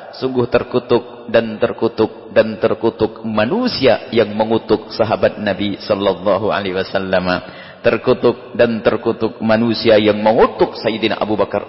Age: 40-59